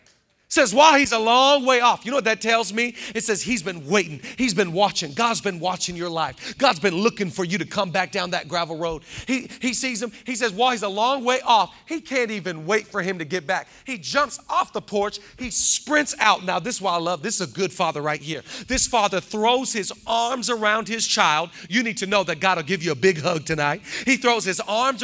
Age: 40-59